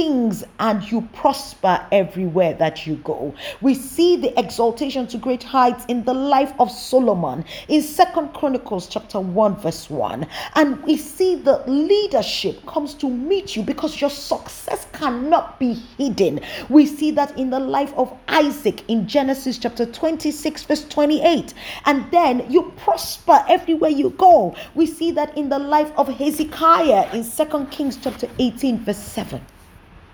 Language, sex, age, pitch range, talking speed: English, female, 30-49, 220-300 Hz, 155 wpm